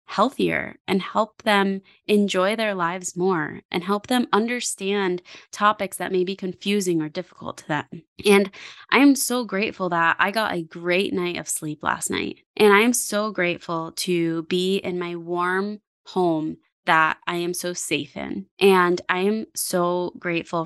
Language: English